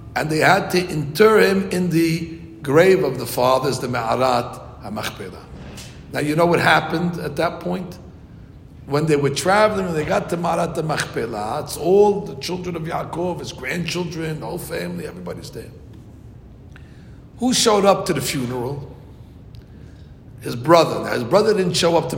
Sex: male